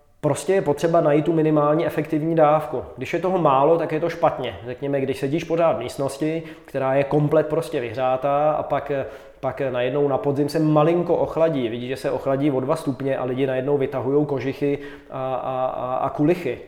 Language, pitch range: Czech, 130-155 Hz